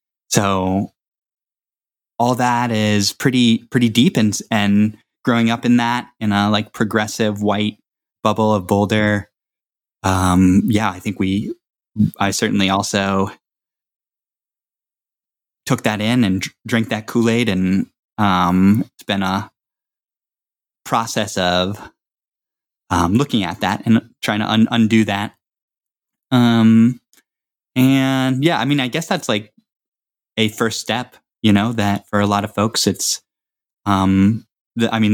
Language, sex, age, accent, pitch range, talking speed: English, male, 10-29, American, 100-115 Hz, 130 wpm